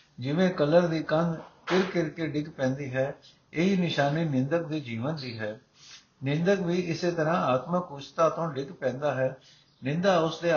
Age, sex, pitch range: 60-79, male, 140-170 Hz